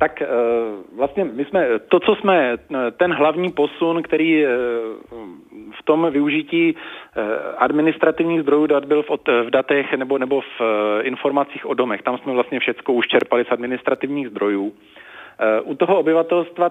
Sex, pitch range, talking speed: male, 130-155 Hz, 135 wpm